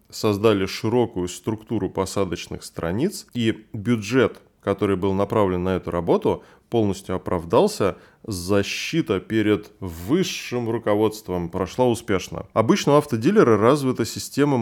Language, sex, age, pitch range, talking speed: Russian, male, 20-39, 95-120 Hz, 105 wpm